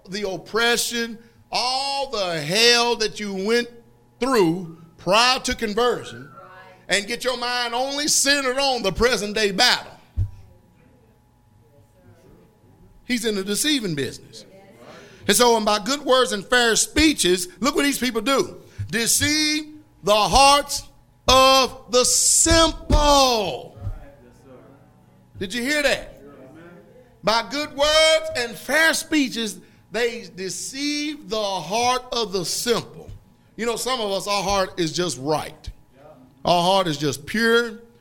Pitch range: 175-245 Hz